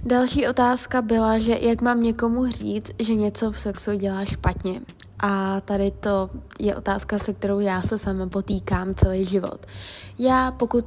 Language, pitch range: Czech, 195-225 Hz